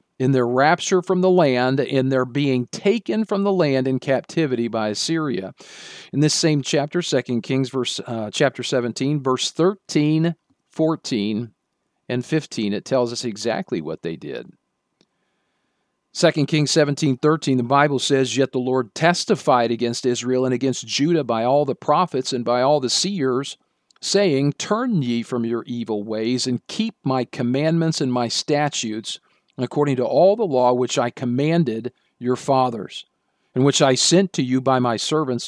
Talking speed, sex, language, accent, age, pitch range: 165 wpm, male, English, American, 50-69, 125-155 Hz